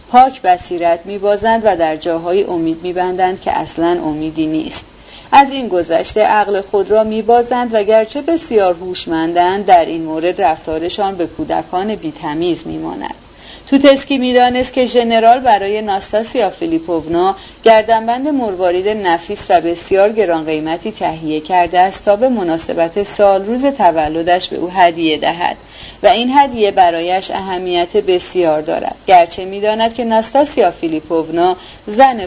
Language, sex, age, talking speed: Persian, female, 40-59, 145 wpm